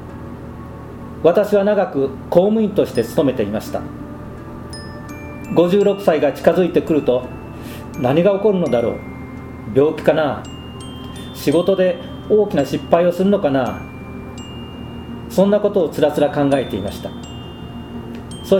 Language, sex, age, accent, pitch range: Japanese, male, 40-59, native, 130-180 Hz